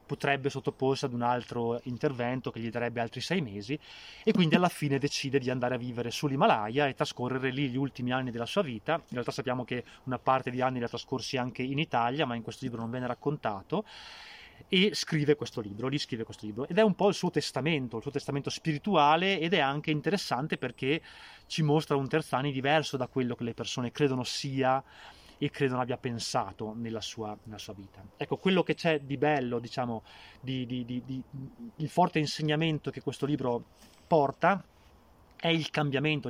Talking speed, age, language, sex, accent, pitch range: 195 wpm, 20-39, Italian, male, native, 120-145 Hz